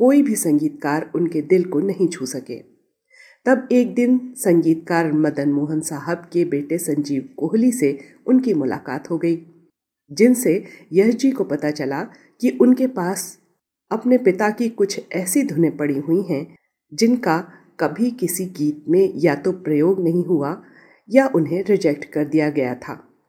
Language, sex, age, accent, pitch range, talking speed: Hindi, female, 40-59, native, 150-225 Hz, 155 wpm